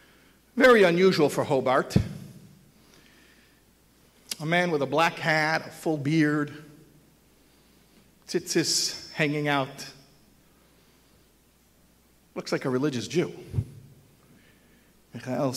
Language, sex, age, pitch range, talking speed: English, male, 50-69, 145-215 Hz, 85 wpm